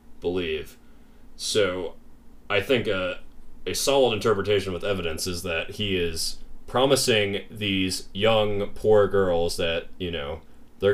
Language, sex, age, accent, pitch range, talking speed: English, male, 20-39, American, 90-110 Hz, 125 wpm